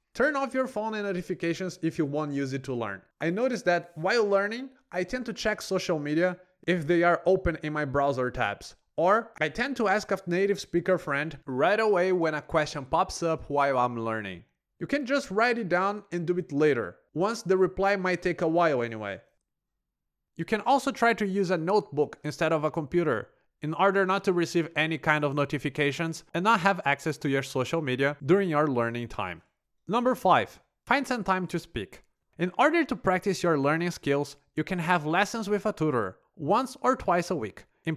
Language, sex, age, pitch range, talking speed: English, male, 30-49, 150-200 Hz, 205 wpm